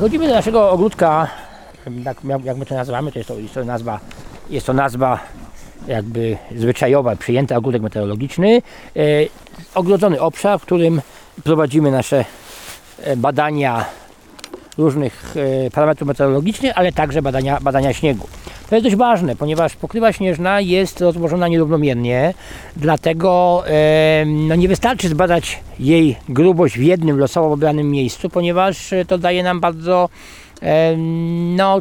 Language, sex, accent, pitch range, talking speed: English, male, Polish, 125-175 Hz, 120 wpm